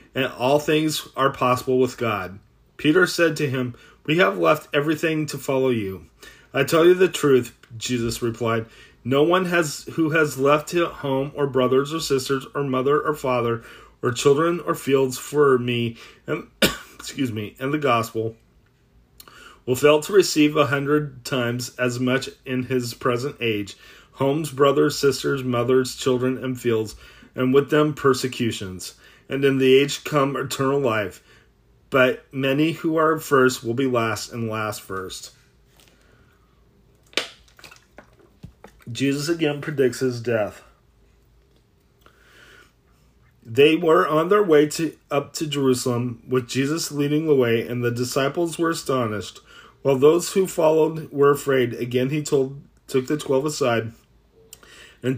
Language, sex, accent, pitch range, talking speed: English, male, American, 125-150 Hz, 145 wpm